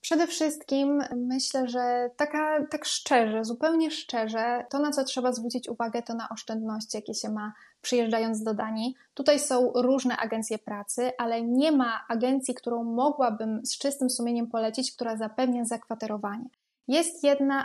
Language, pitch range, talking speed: Polish, 225-260 Hz, 145 wpm